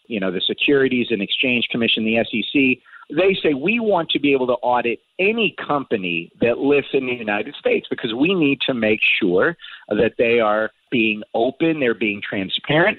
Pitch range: 110-145 Hz